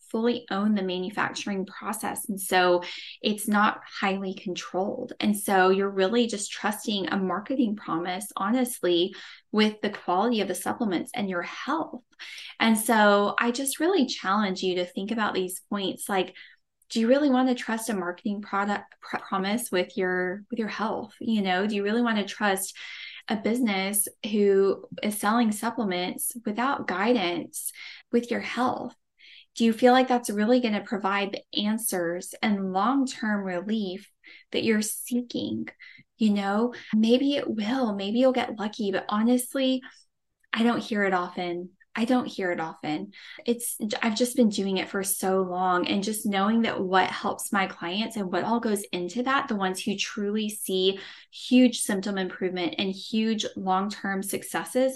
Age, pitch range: 10-29, 190-235 Hz